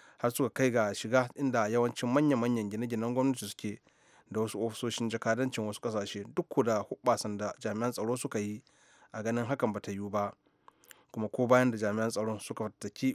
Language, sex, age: English, male, 30-49